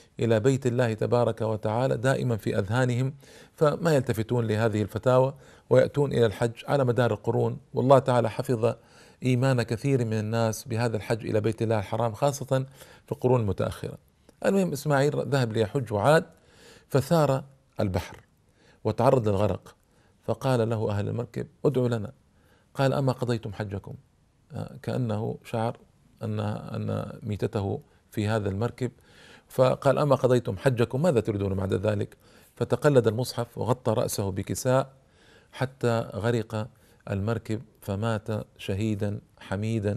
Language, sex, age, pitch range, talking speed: Arabic, male, 40-59, 110-130 Hz, 120 wpm